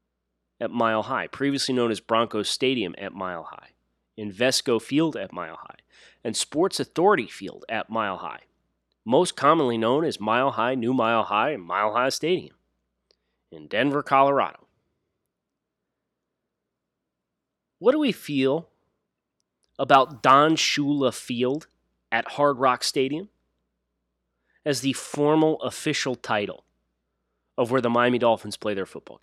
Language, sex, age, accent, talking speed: English, male, 30-49, American, 130 wpm